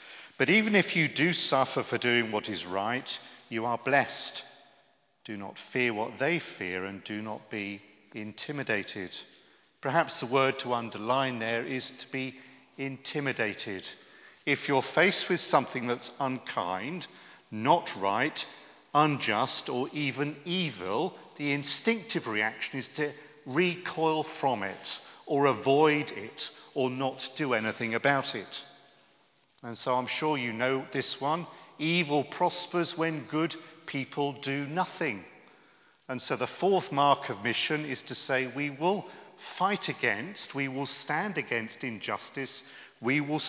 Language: English